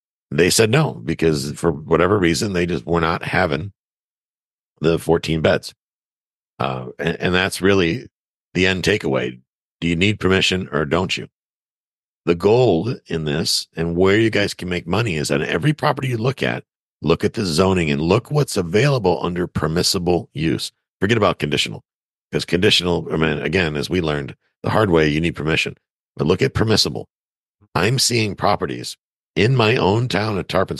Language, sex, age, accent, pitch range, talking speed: English, male, 50-69, American, 80-110 Hz, 175 wpm